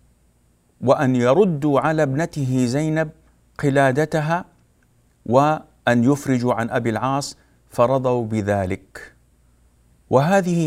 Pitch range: 105-145 Hz